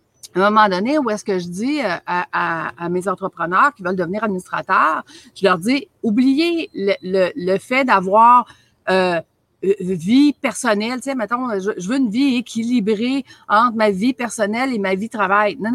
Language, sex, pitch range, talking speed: French, female, 195-275 Hz, 180 wpm